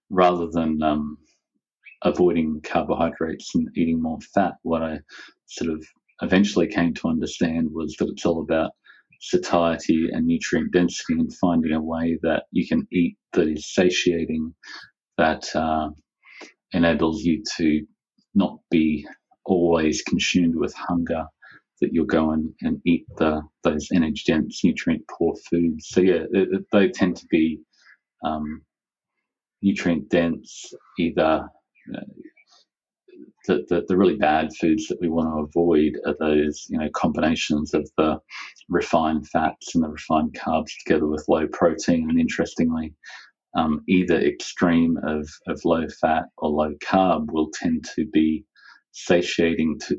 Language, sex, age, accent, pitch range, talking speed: English, male, 30-49, Australian, 80-90 Hz, 140 wpm